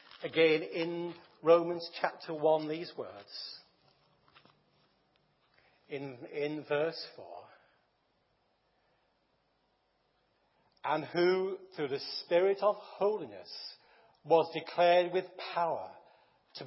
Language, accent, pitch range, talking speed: English, British, 155-200 Hz, 85 wpm